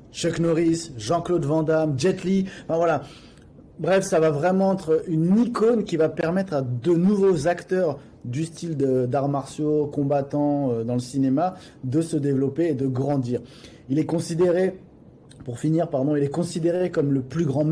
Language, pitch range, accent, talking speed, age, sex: French, 140-170 Hz, French, 175 wpm, 20-39, male